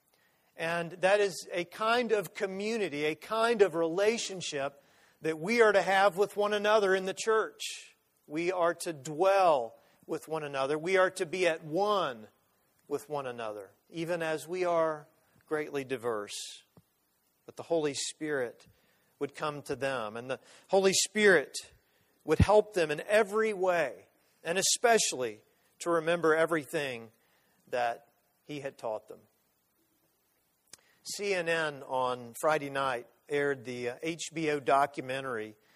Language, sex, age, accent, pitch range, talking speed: English, male, 40-59, American, 140-190 Hz, 135 wpm